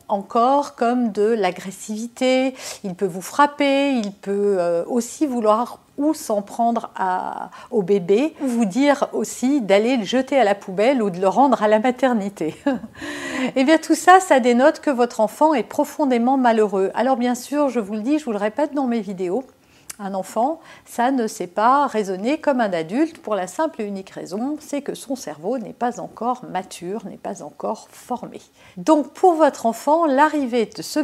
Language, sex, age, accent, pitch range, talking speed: French, female, 50-69, French, 195-280 Hz, 185 wpm